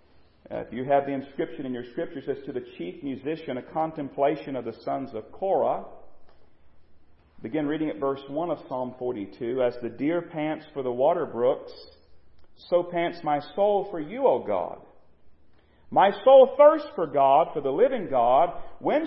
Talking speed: 175 wpm